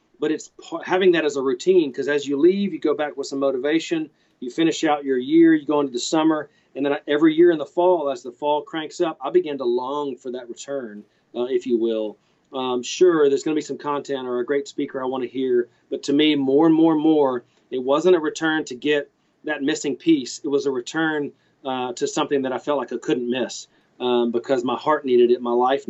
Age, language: 40-59, English